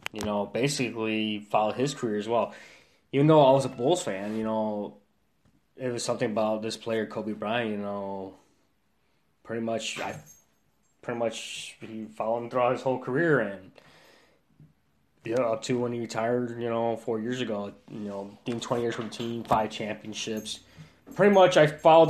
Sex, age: male, 20-39